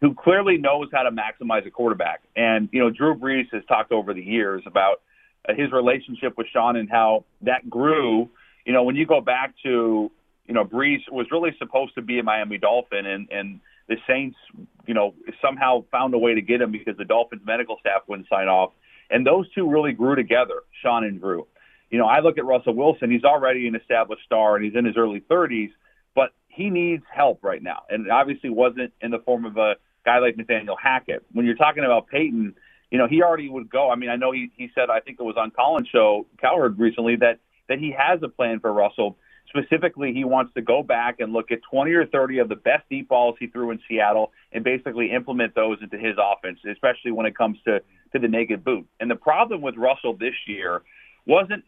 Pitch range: 110-140 Hz